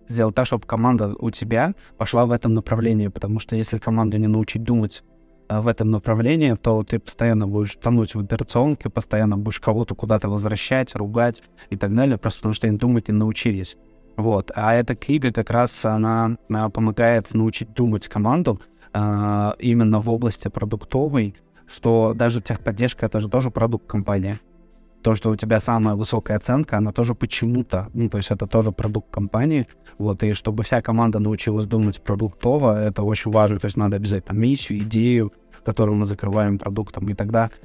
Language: Russian